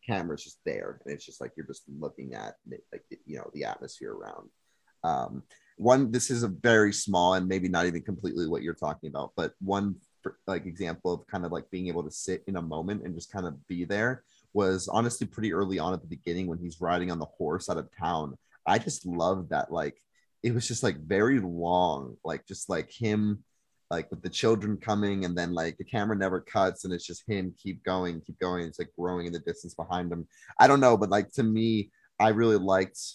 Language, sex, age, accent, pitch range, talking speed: English, male, 30-49, American, 85-110 Hz, 225 wpm